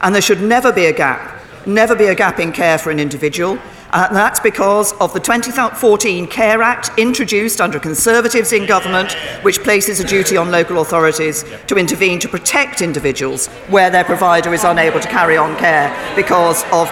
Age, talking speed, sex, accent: 40-59, 185 wpm, female, British